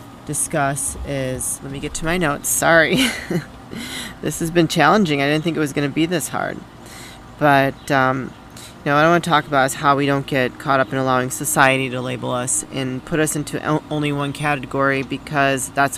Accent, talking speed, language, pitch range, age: American, 210 wpm, English, 130-150 Hz, 30-49